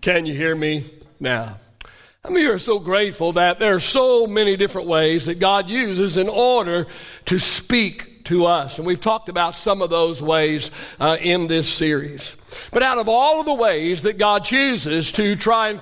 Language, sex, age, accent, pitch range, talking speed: English, male, 60-79, American, 165-230 Hz, 195 wpm